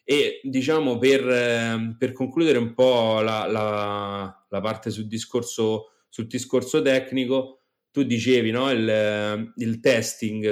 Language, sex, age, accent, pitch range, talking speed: Italian, male, 30-49, native, 105-125 Hz, 125 wpm